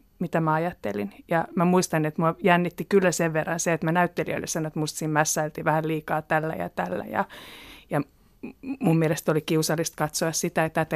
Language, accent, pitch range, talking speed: Finnish, native, 160-175 Hz, 195 wpm